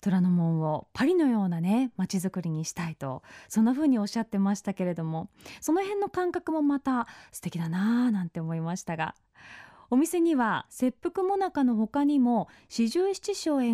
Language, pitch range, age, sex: Japanese, 190-295 Hz, 20-39, female